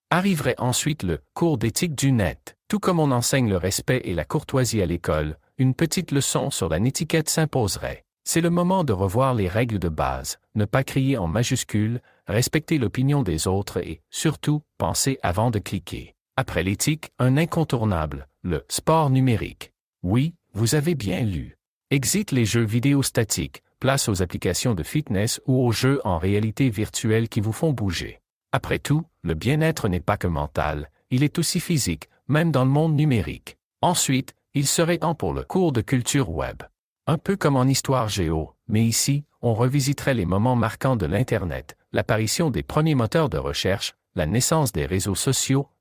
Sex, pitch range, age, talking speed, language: male, 100-150 Hz, 50-69, 180 wpm, French